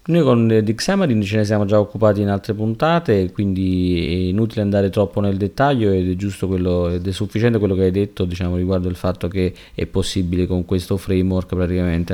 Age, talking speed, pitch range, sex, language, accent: 30-49, 205 wpm, 85-100 Hz, male, Italian, native